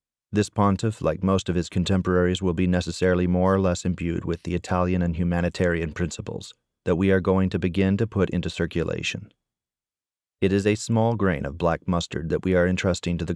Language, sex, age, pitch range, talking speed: English, male, 30-49, 85-100 Hz, 200 wpm